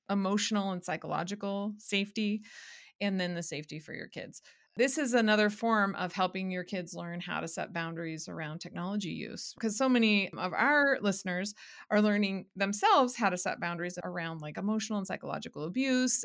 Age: 30-49